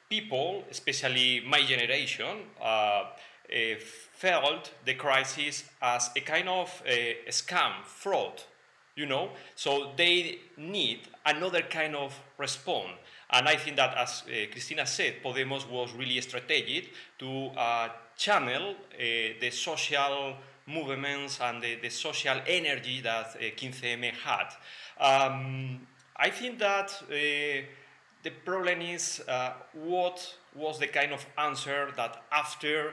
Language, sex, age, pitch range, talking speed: English, male, 30-49, 125-170 Hz, 125 wpm